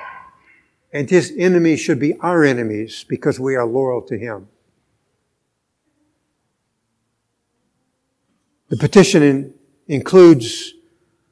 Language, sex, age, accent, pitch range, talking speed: English, male, 60-79, American, 130-180 Hz, 85 wpm